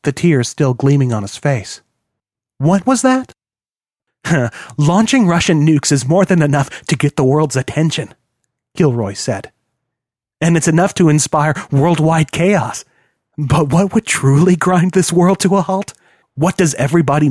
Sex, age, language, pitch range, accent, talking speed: male, 30-49, English, 130-165 Hz, American, 155 wpm